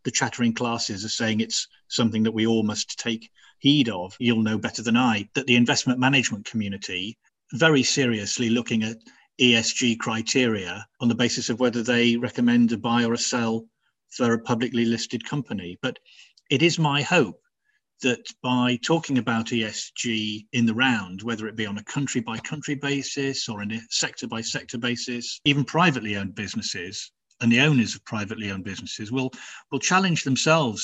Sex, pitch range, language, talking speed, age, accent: male, 110-125 Hz, English, 175 wpm, 40-59, British